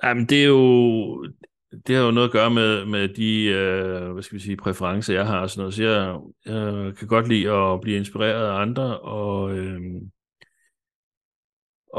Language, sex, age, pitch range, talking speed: Danish, male, 60-79, 95-115 Hz, 170 wpm